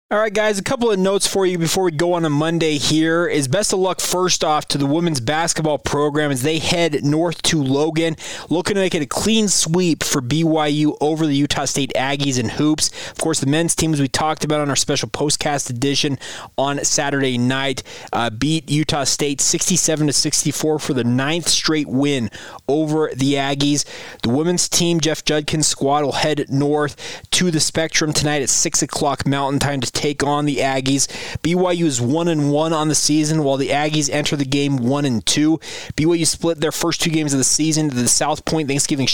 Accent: American